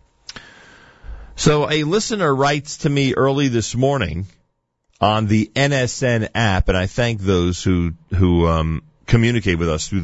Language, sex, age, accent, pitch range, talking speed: English, male, 40-59, American, 90-130 Hz, 145 wpm